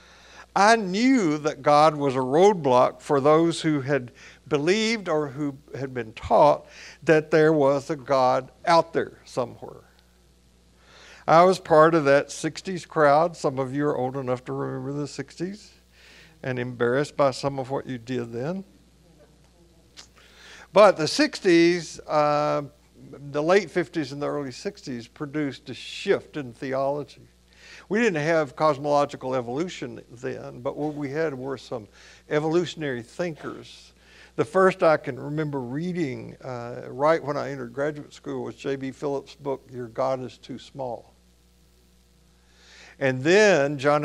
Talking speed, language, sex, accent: 145 wpm, English, male, American